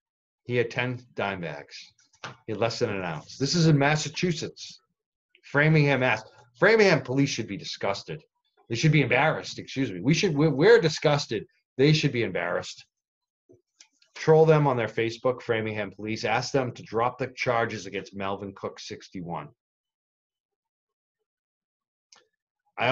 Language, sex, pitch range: English, male, 110-160 Hz